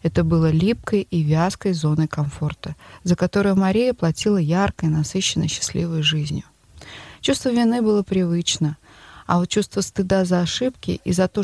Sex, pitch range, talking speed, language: female, 160-200 Hz, 145 wpm, Russian